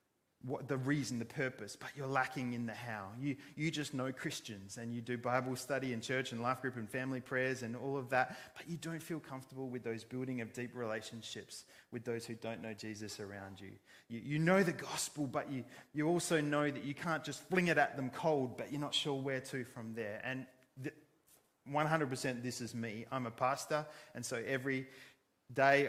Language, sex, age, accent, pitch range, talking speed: English, male, 30-49, Australian, 120-145 Hz, 215 wpm